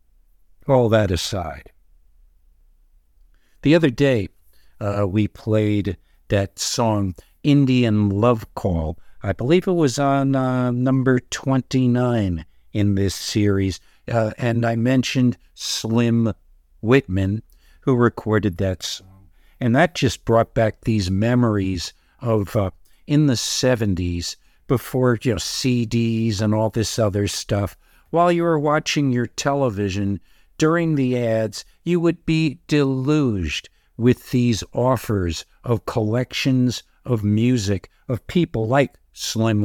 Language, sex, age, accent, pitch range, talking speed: English, male, 60-79, American, 95-125 Hz, 120 wpm